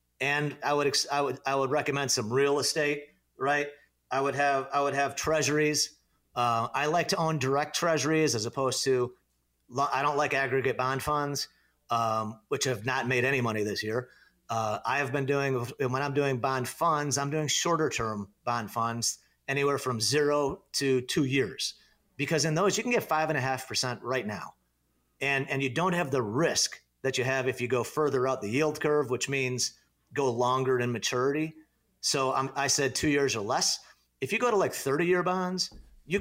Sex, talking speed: male, 195 wpm